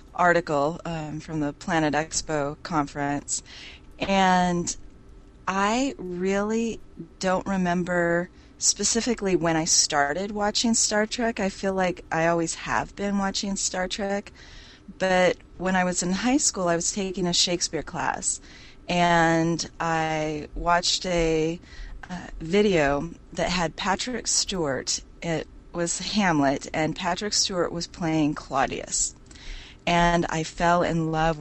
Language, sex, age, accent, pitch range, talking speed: English, female, 30-49, American, 155-185 Hz, 125 wpm